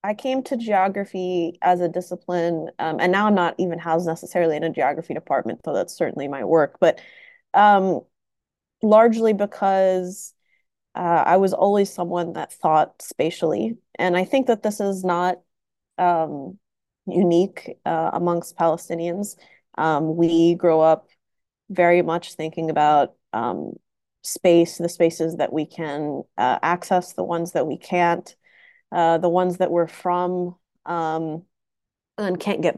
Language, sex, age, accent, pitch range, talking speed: English, female, 30-49, American, 160-185 Hz, 145 wpm